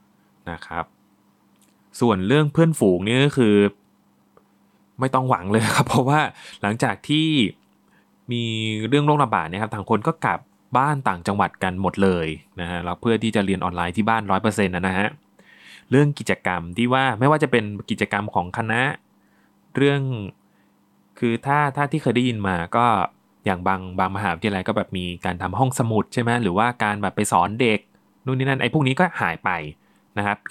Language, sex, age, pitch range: Thai, male, 20-39, 100-135 Hz